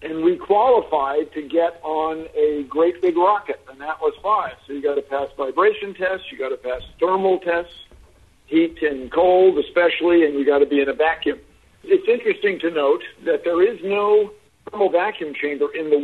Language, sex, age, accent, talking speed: English, male, 60-79, American, 195 wpm